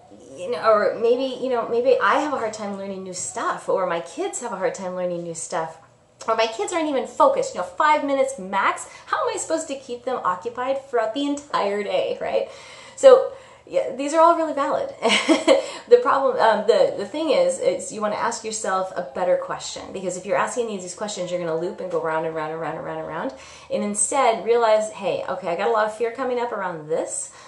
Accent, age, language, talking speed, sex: American, 30-49, English, 235 wpm, female